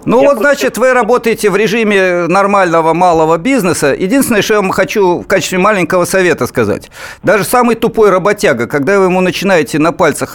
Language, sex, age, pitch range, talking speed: Russian, male, 50-69, 165-225 Hz, 175 wpm